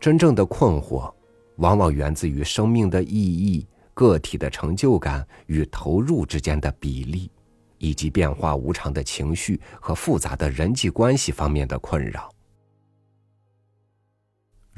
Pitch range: 75-105 Hz